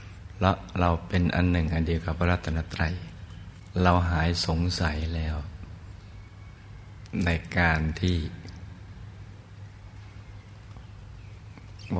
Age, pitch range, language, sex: 60-79, 85-100 Hz, Thai, male